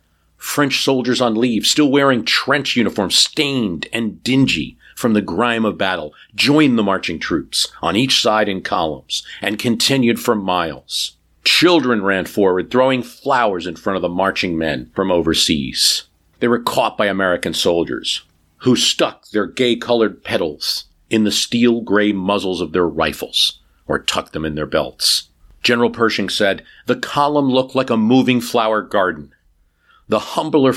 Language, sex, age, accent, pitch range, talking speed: English, male, 50-69, American, 90-125 Hz, 155 wpm